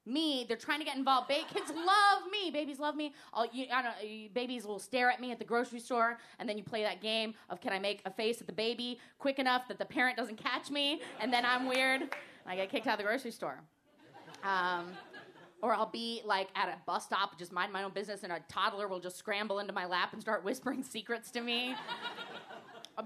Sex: female